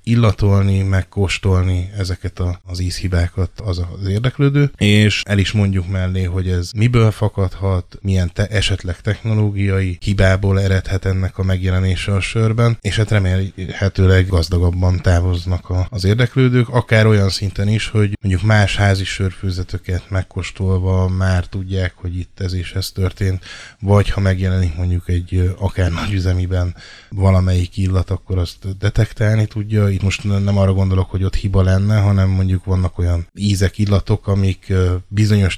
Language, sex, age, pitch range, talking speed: Hungarian, male, 10-29, 90-100 Hz, 140 wpm